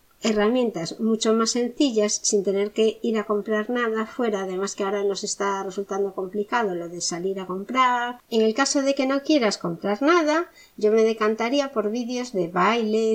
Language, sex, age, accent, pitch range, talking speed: Spanish, female, 50-69, Spanish, 195-235 Hz, 185 wpm